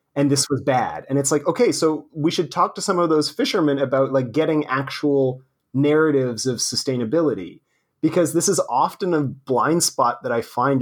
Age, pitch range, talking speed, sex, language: 30-49, 130-155 Hz, 190 wpm, male, English